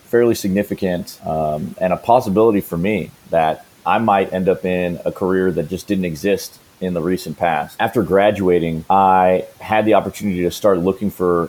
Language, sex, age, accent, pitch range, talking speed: English, male, 30-49, American, 90-105 Hz, 180 wpm